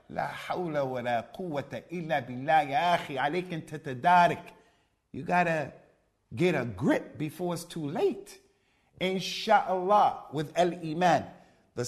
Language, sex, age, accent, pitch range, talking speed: English, male, 50-69, American, 155-190 Hz, 75 wpm